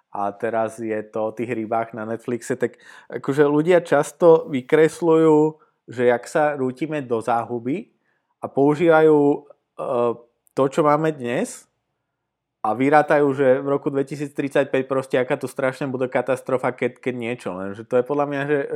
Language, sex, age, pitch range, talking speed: Slovak, male, 20-39, 115-140 Hz, 155 wpm